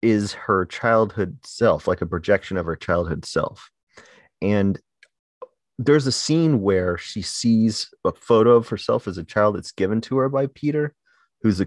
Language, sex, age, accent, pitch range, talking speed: English, male, 30-49, American, 90-115 Hz, 170 wpm